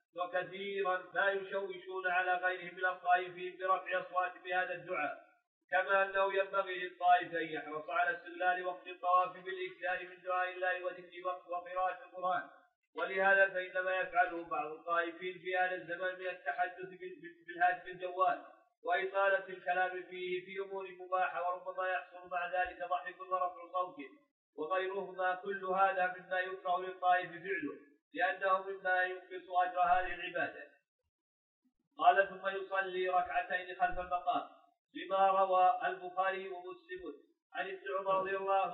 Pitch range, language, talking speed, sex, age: 180-195 Hz, Arabic, 125 wpm, male, 50-69